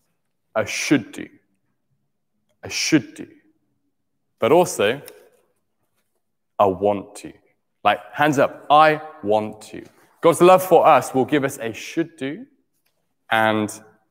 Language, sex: English, male